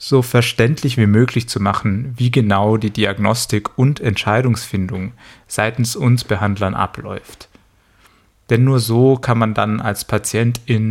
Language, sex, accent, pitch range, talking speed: German, male, German, 110-130 Hz, 130 wpm